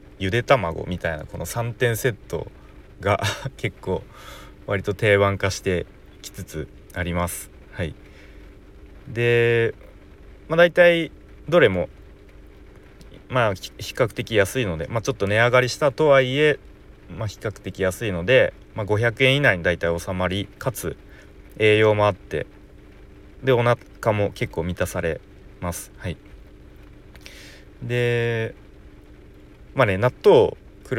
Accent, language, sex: native, Japanese, male